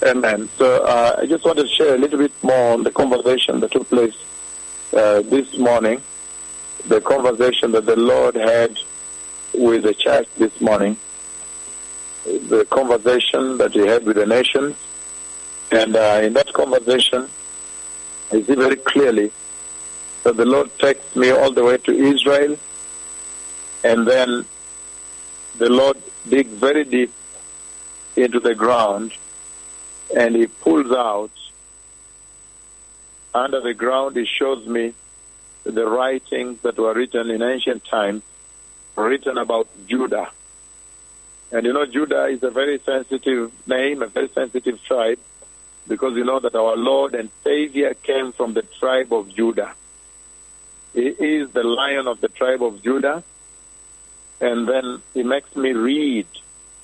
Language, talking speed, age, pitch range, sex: English, 140 wpm, 50-69, 80-130 Hz, male